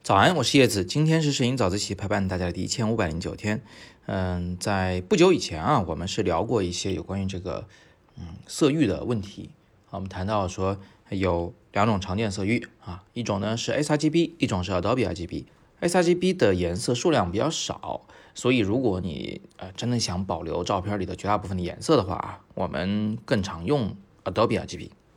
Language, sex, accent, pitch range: Chinese, male, native, 95-125 Hz